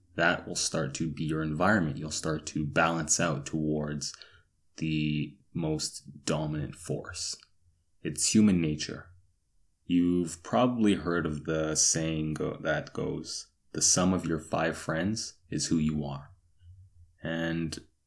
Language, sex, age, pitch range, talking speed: English, male, 20-39, 80-90 Hz, 130 wpm